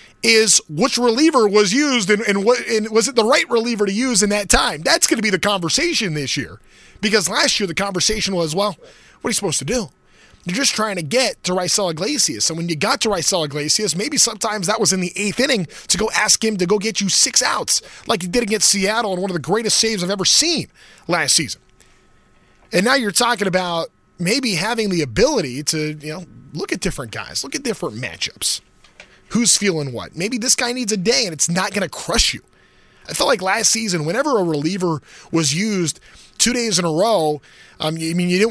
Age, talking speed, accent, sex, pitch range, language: 20-39, 225 wpm, American, male, 180-225 Hz, English